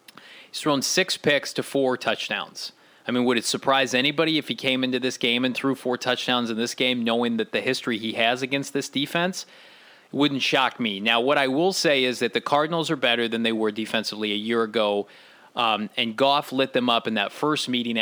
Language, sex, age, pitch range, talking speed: English, male, 30-49, 115-140 Hz, 220 wpm